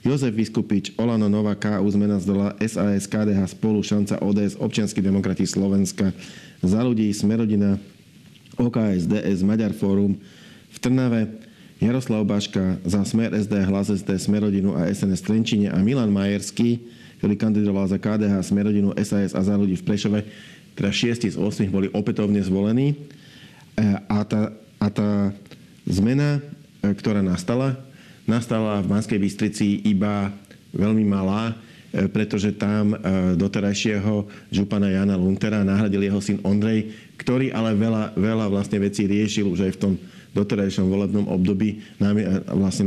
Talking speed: 130 wpm